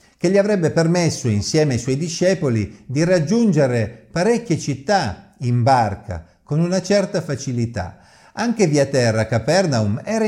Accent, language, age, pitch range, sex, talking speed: native, Italian, 50-69, 110-175 Hz, male, 135 wpm